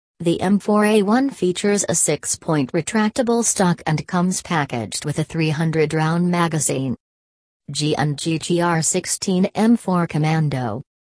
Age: 40-59